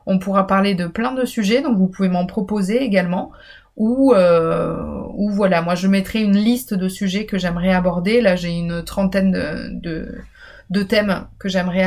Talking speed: 185 wpm